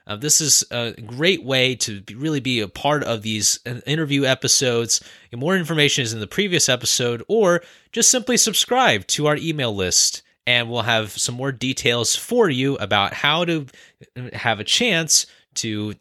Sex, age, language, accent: male, 20-39, English, American